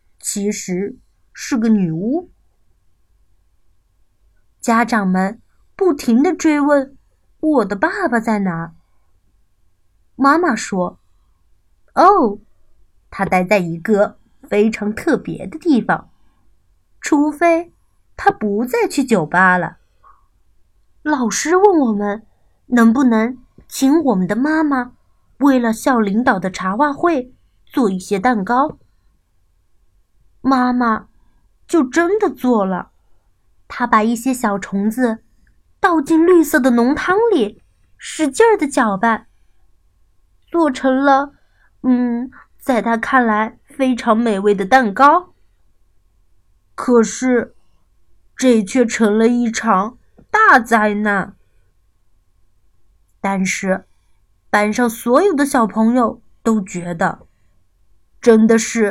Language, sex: Chinese, female